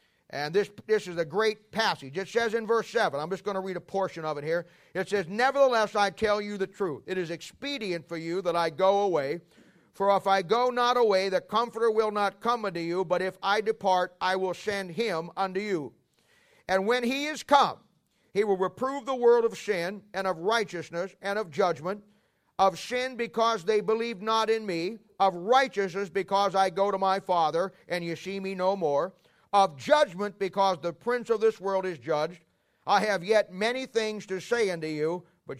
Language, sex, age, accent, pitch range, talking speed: English, male, 50-69, American, 180-225 Hz, 205 wpm